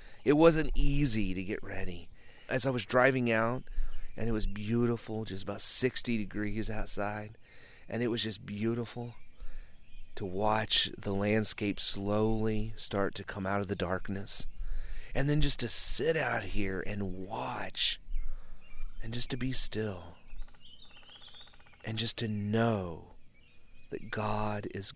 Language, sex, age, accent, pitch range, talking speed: English, male, 30-49, American, 95-120 Hz, 140 wpm